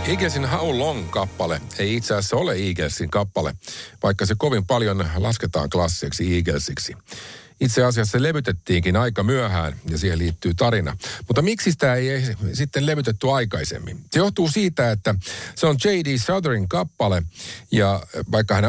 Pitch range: 90-125 Hz